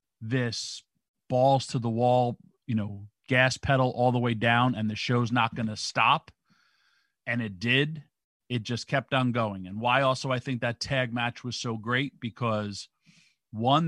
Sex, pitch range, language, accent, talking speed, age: male, 110-135 Hz, English, American, 175 wpm, 40-59